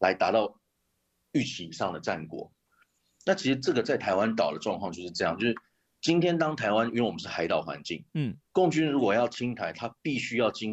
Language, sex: Chinese, male